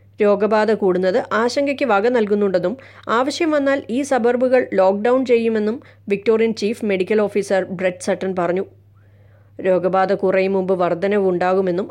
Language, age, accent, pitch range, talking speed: Malayalam, 20-39, native, 175-215 Hz, 100 wpm